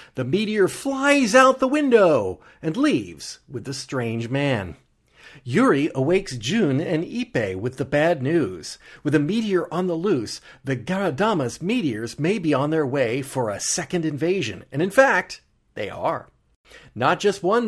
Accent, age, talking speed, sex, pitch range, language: American, 40-59, 160 wpm, male, 135-200 Hz, English